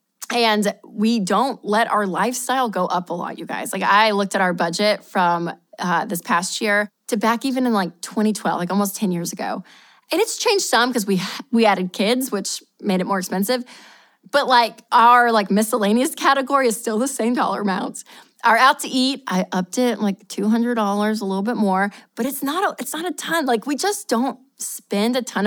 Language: English